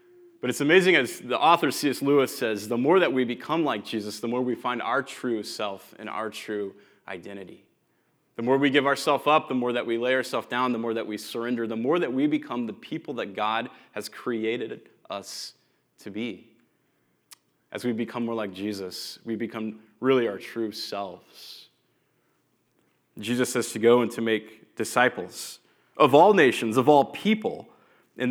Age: 20-39